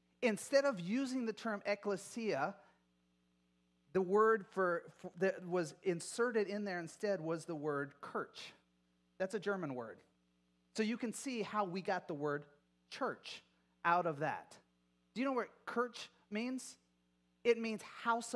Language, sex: English, male